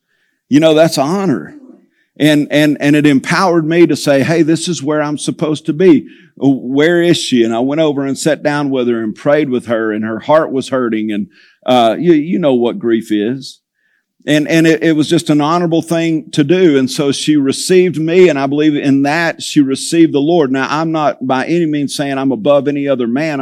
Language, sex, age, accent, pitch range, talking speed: English, male, 50-69, American, 125-160 Hz, 225 wpm